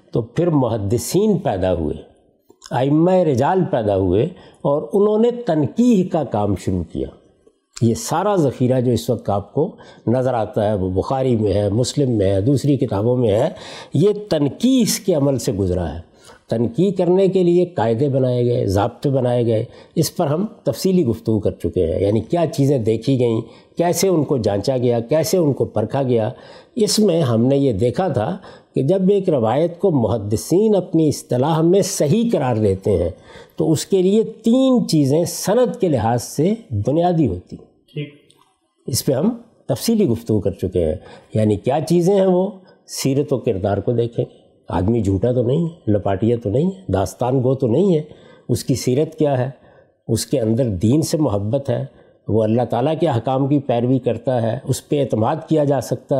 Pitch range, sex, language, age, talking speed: 115-170 Hz, male, Urdu, 60-79, 185 wpm